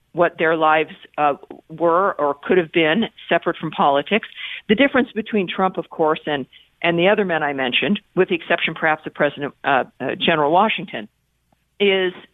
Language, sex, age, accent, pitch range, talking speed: English, female, 50-69, American, 160-200 Hz, 175 wpm